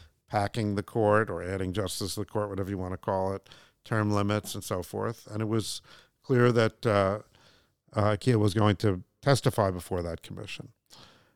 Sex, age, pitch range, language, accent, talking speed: male, 70-89, 100-120 Hz, English, American, 185 wpm